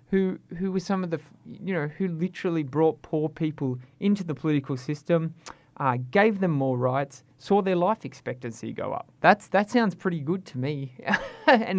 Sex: male